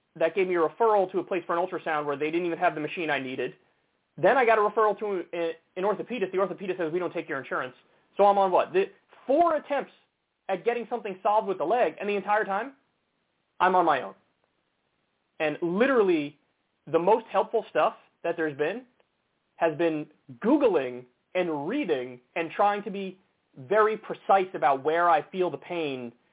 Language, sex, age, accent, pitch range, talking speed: English, male, 30-49, American, 150-195 Hz, 190 wpm